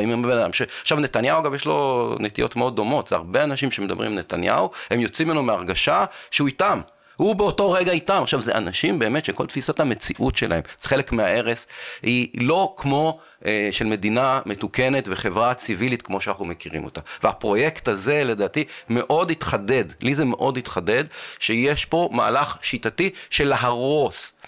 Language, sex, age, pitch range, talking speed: Hebrew, male, 40-59, 110-155 Hz, 155 wpm